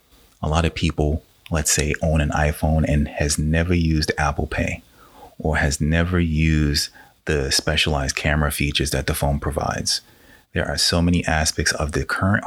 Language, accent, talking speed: English, American, 170 wpm